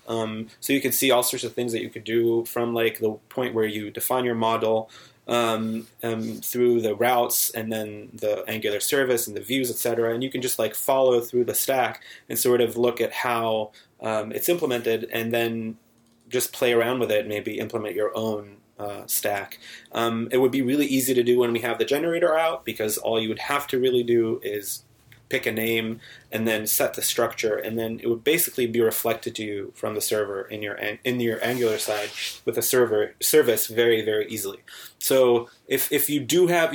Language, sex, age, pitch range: English, male, 30-49, 110-130 Hz